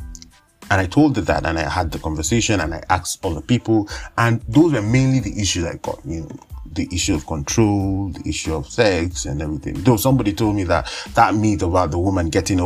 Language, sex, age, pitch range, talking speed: English, male, 30-49, 85-105 Hz, 220 wpm